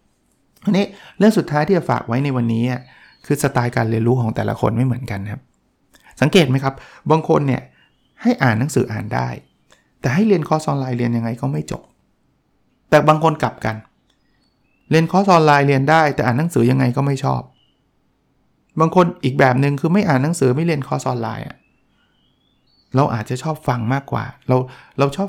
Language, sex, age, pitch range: Thai, male, 60-79, 120-160 Hz